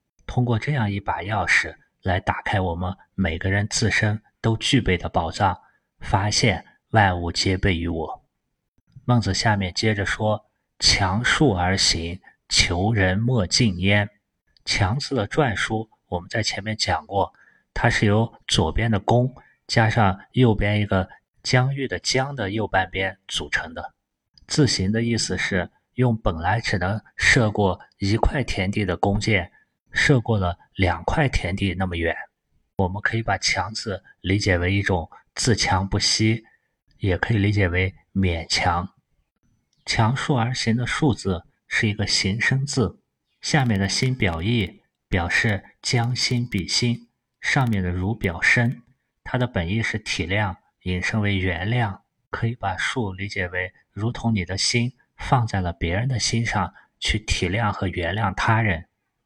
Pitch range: 95-115 Hz